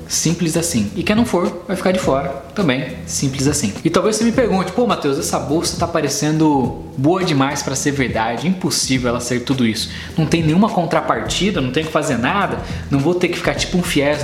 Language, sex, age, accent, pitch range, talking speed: Portuguese, male, 20-39, Brazilian, 130-175 Hz, 215 wpm